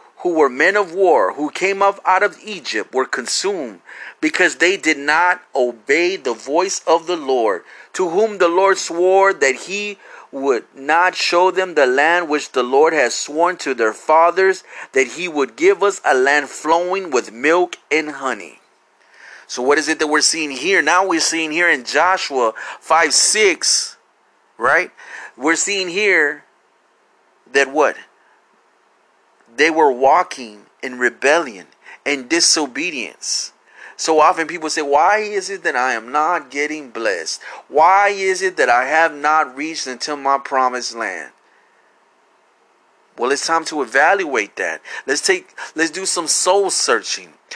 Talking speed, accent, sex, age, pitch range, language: 155 wpm, American, male, 30-49, 150-200 Hz, English